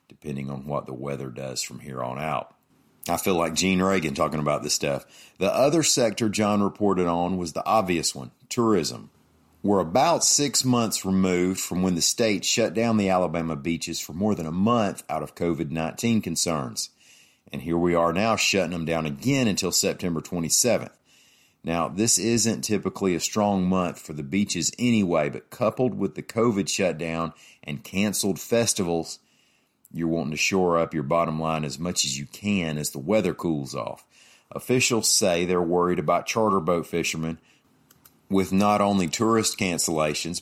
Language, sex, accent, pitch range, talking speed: English, male, American, 75-95 Hz, 170 wpm